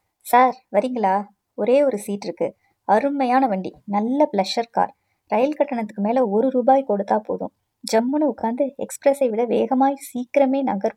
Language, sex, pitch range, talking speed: Tamil, male, 205-255 Hz, 135 wpm